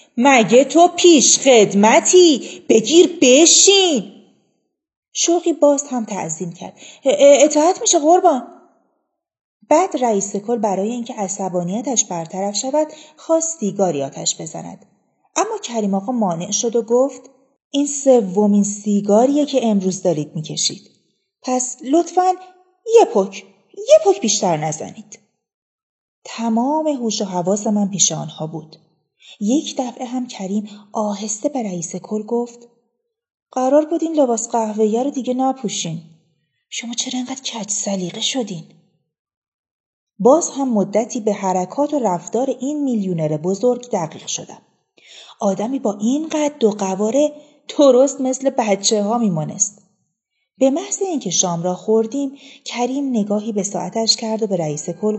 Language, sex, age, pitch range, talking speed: Persian, female, 30-49, 200-290 Hz, 125 wpm